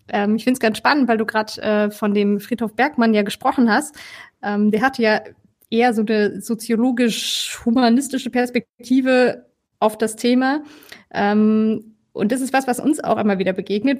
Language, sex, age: German, female, 20-39